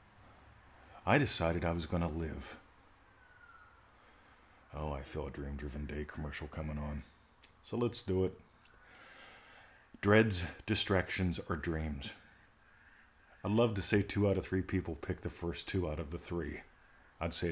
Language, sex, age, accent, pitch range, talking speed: English, male, 40-59, American, 85-105 Hz, 150 wpm